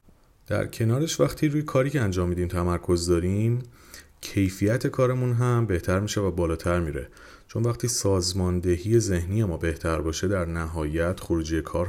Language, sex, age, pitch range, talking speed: Persian, male, 30-49, 85-105 Hz, 145 wpm